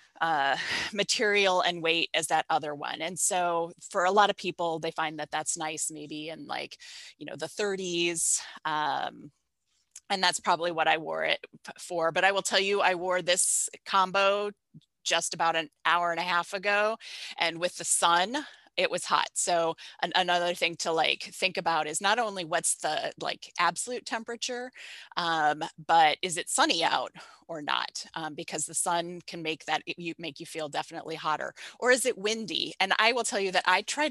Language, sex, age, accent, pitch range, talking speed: English, female, 20-39, American, 165-210 Hz, 190 wpm